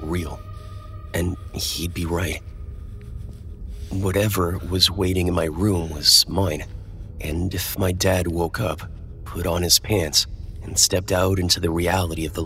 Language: English